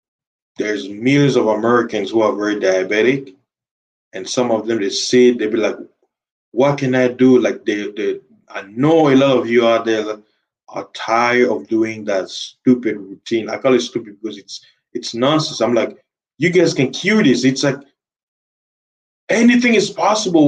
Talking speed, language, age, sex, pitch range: 175 wpm, English, 20-39, male, 110-180 Hz